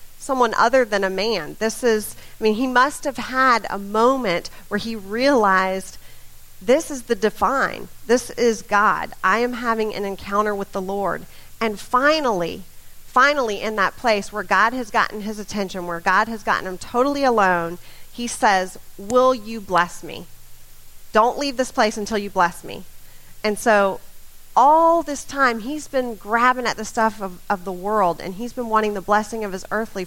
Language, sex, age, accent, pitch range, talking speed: English, female, 40-59, American, 190-245 Hz, 180 wpm